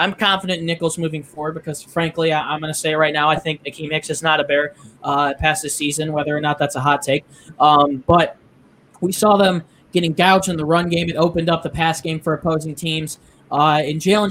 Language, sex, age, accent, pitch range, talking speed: English, male, 20-39, American, 145-170 Hz, 245 wpm